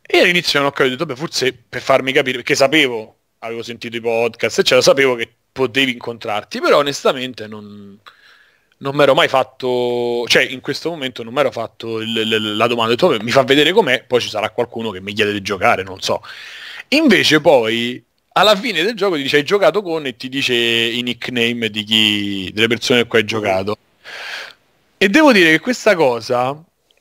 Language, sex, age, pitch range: Italian, male, 30-49, 120-150 Hz